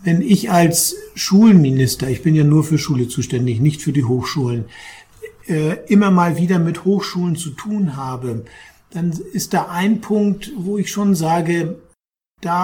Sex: male